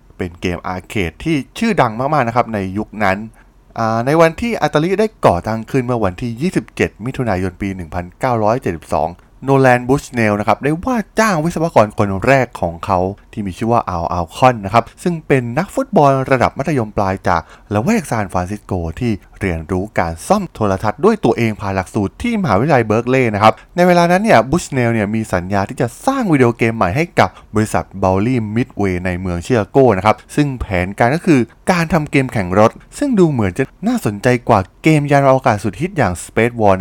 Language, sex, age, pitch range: Thai, male, 20-39, 100-150 Hz